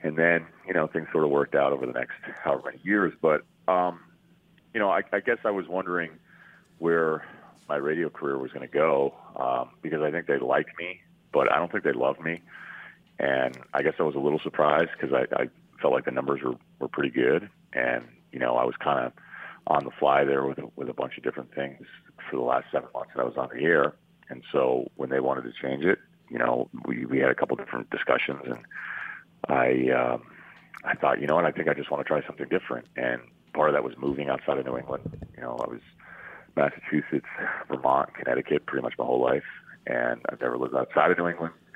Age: 40-59